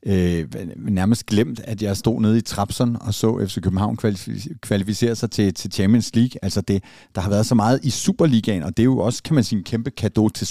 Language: Danish